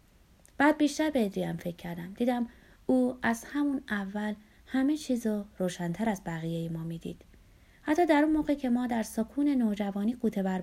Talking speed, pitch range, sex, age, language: 165 wpm, 180-240 Hz, female, 20-39, Persian